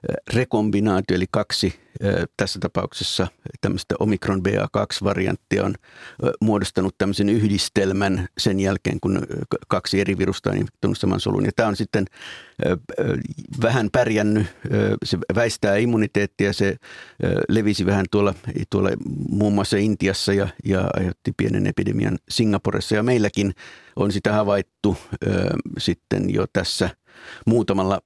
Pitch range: 95-110 Hz